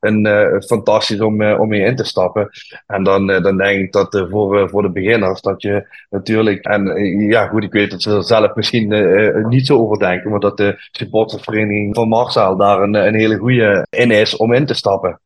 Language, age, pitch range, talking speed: Dutch, 20-39, 95-110 Hz, 235 wpm